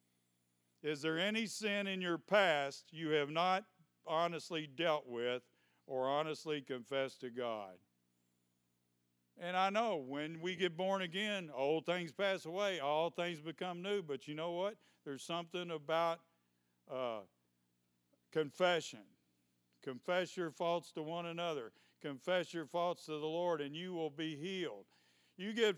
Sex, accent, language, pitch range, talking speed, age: male, American, English, 125-180 Hz, 145 wpm, 50-69